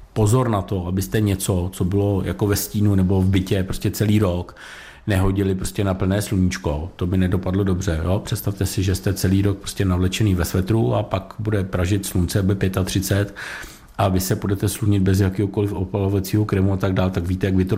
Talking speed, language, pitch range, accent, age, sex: 205 wpm, Czech, 95-110 Hz, native, 50-69, male